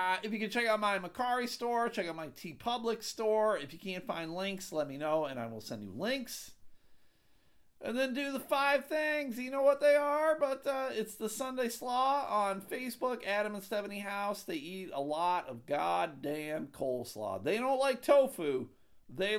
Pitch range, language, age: 155-235 Hz, English, 50-69